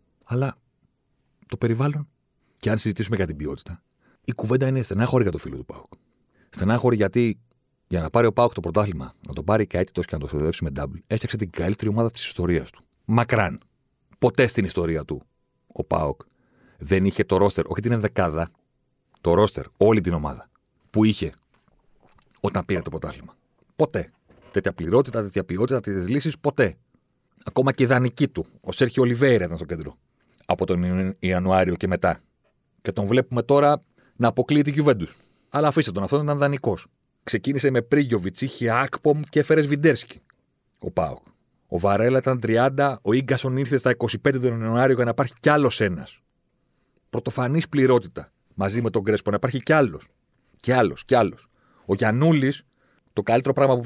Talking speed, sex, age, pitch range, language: 170 wpm, male, 40-59, 95-130 Hz, Greek